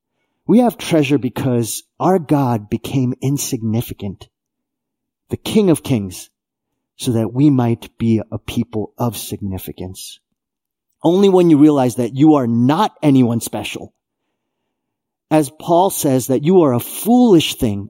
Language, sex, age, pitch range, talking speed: English, male, 40-59, 110-150 Hz, 135 wpm